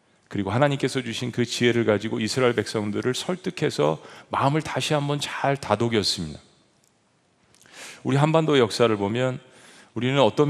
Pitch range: 110-150 Hz